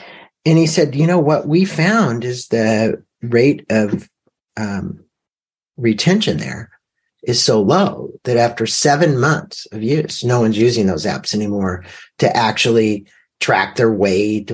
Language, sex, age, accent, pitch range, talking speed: English, male, 50-69, American, 110-175 Hz, 145 wpm